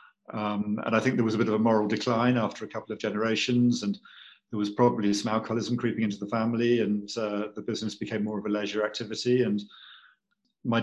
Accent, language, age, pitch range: British, English, 50-69, 105-125 Hz